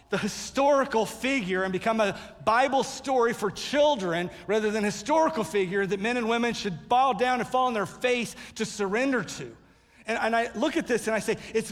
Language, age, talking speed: English, 50-69, 200 wpm